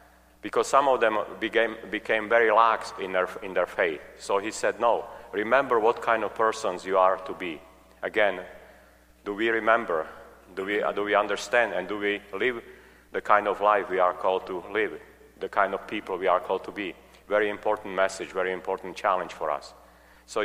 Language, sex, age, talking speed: English, male, 40-59, 190 wpm